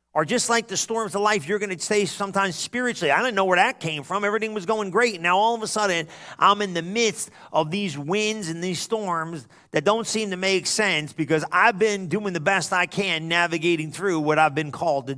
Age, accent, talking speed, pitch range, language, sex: 40-59, American, 240 wpm, 150-200 Hz, English, male